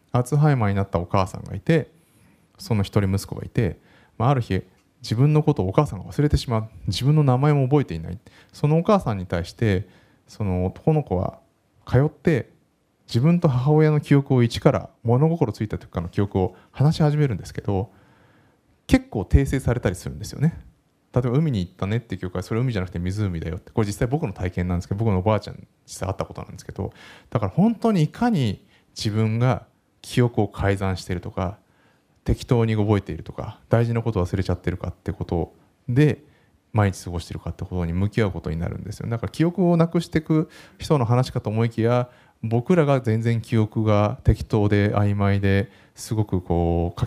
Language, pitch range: Japanese, 95-130 Hz